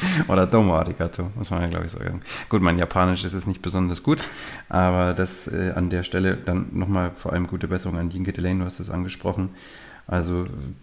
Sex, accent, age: male, German, 30-49